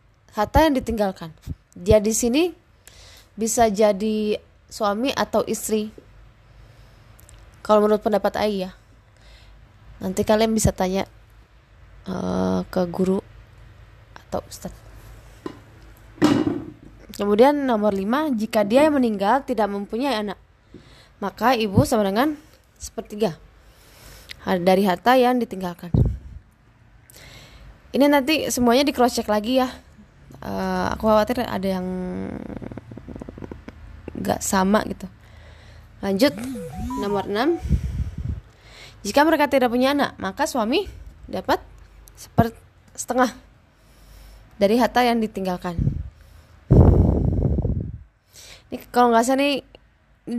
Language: Indonesian